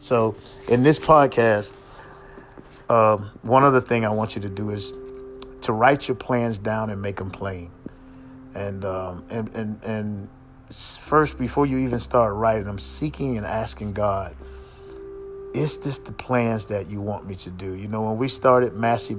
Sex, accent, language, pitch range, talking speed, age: male, American, English, 105-130 Hz, 170 wpm, 50-69